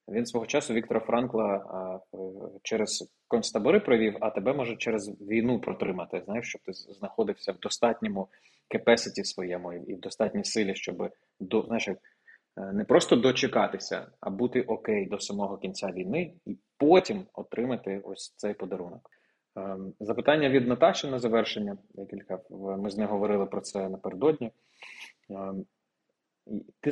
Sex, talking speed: male, 130 wpm